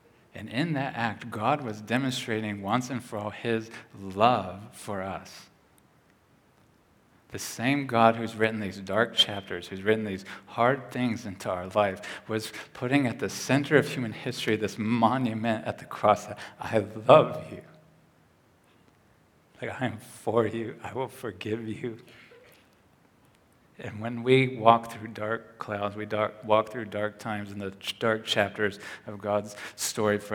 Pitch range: 95-110 Hz